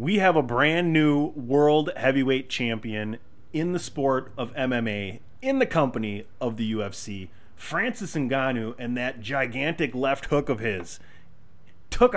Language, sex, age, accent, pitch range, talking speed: English, male, 30-49, American, 105-135 Hz, 145 wpm